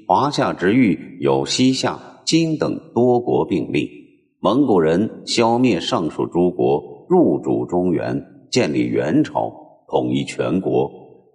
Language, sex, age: Chinese, male, 50-69